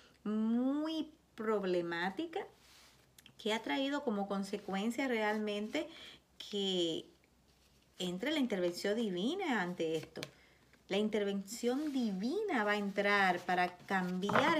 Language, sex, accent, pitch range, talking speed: Spanish, female, American, 190-245 Hz, 95 wpm